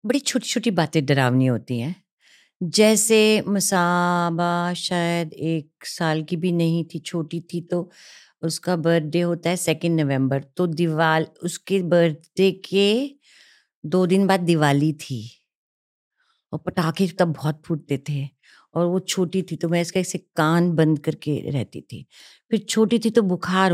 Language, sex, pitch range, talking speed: Hindi, female, 165-210 Hz, 150 wpm